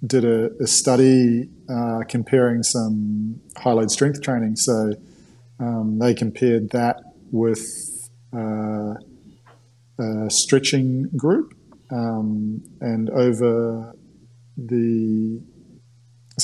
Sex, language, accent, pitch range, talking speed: male, English, Australian, 110-125 Hz, 90 wpm